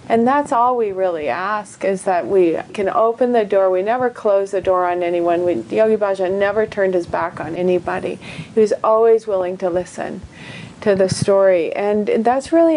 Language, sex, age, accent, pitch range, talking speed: English, female, 40-59, American, 180-215 Hz, 190 wpm